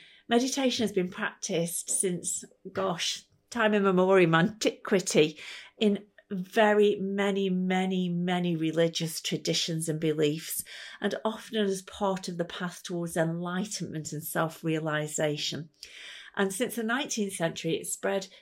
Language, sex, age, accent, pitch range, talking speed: English, female, 40-59, British, 165-200 Hz, 120 wpm